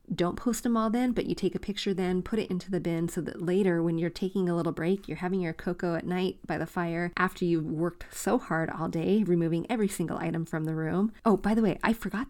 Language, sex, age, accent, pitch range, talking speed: English, female, 30-49, American, 165-195 Hz, 265 wpm